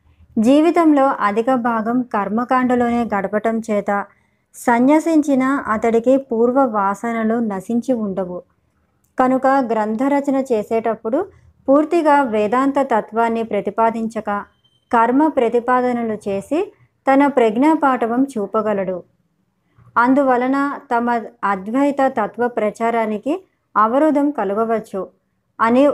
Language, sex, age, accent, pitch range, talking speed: Telugu, male, 20-39, native, 210-265 Hz, 75 wpm